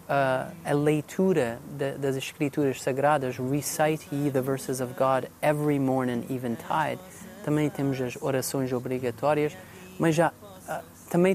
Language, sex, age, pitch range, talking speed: Portuguese, male, 30-49, 135-180 Hz, 130 wpm